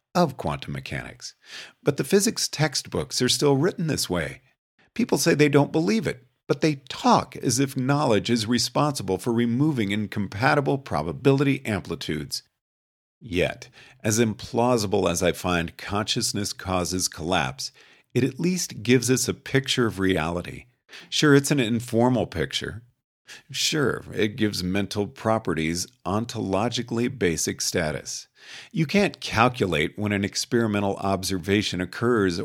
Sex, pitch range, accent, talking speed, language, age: male, 100-135 Hz, American, 130 wpm, English, 50-69